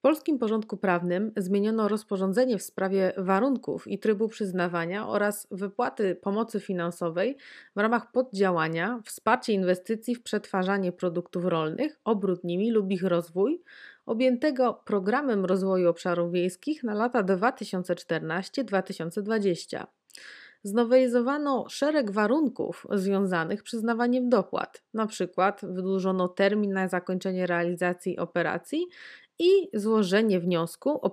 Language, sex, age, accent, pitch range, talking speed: Polish, female, 30-49, native, 180-235 Hz, 110 wpm